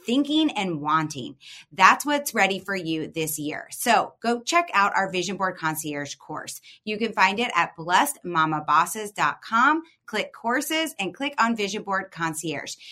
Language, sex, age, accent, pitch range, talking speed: English, female, 30-49, American, 175-235 Hz, 155 wpm